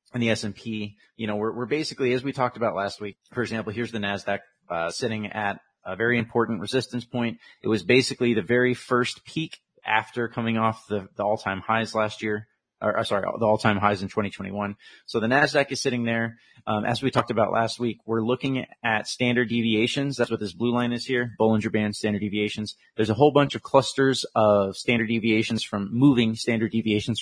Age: 30-49